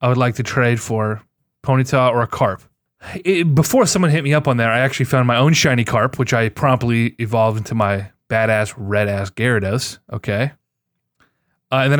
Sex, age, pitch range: male, 20-39, 110-135 Hz